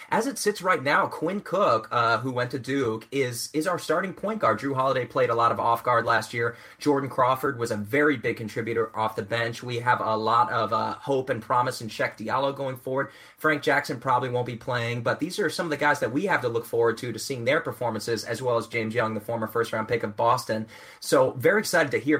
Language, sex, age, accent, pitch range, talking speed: English, male, 30-49, American, 115-150 Hz, 245 wpm